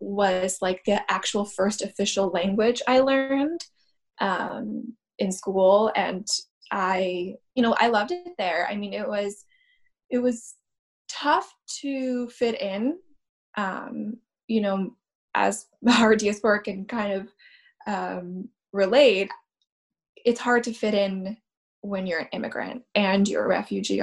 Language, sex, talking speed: English, female, 135 wpm